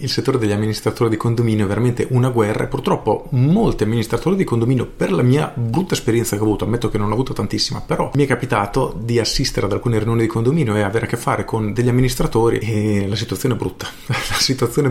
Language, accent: Italian, native